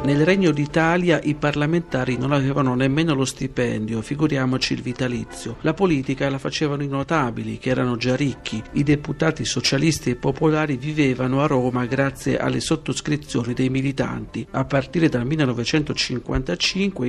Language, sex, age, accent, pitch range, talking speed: Italian, male, 50-69, native, 125-155 Hz, 140 wpm